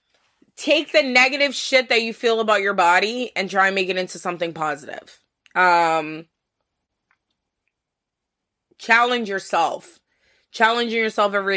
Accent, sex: American, female